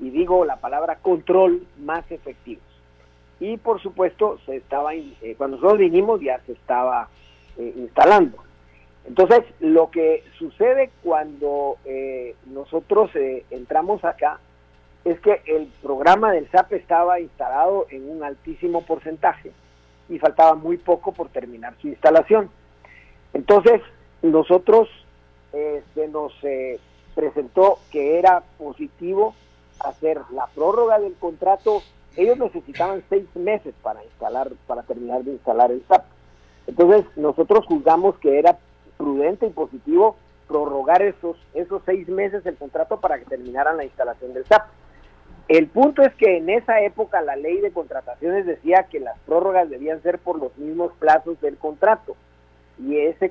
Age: 50-69